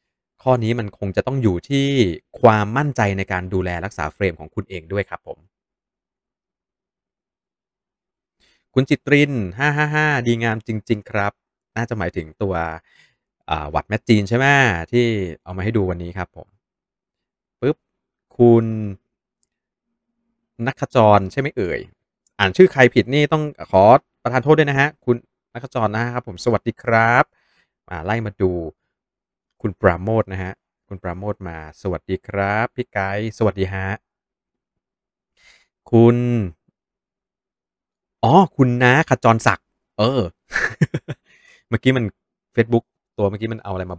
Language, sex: Thai, male